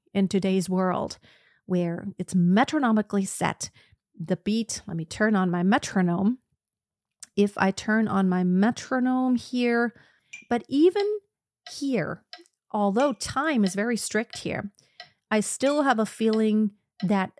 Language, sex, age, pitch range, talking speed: English, female, 40-59, 190-250 Hz, 130 wpm